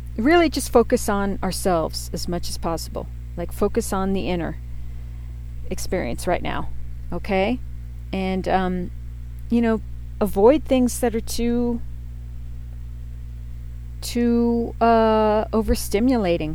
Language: English